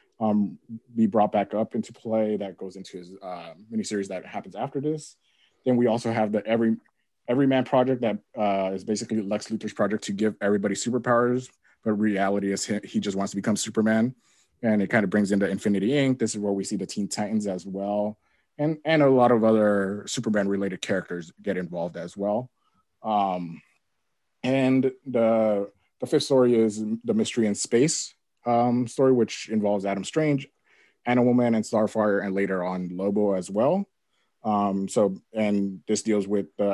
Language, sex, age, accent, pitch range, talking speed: English, male, 20-39, American, 100-115 Hz, 180 wpm